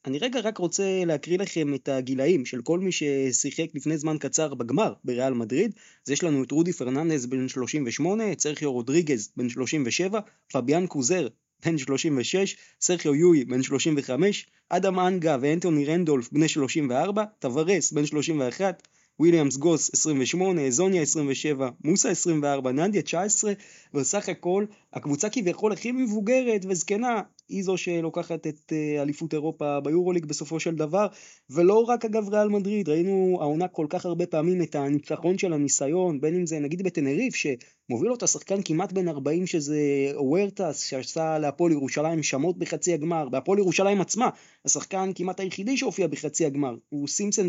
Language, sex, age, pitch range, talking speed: Hebrew, male, 20-39, 145-190 Hz, 150 wpm